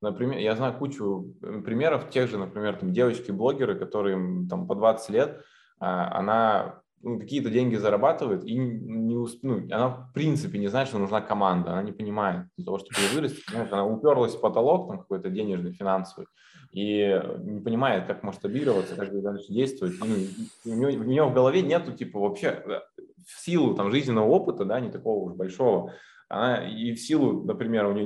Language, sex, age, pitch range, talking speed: Russian, male, 20-39, 100-130 Hz, 165 wpm